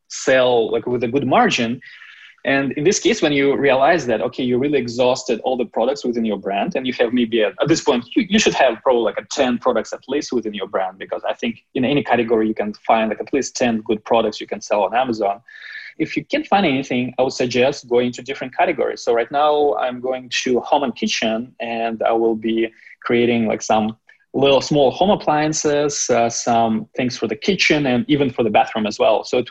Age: 20-39